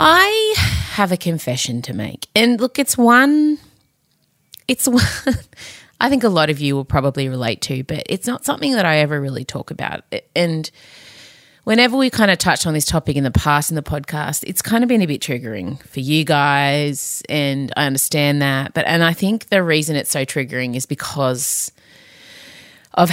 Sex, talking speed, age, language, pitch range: female, 190 wpm, 30-49, English, 140-230 Hz